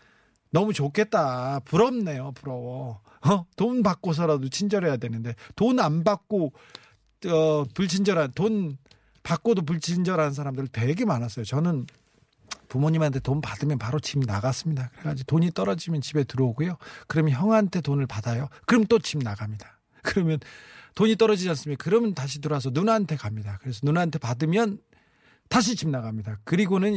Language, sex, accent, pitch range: Korean, male, native, 130-185 Hz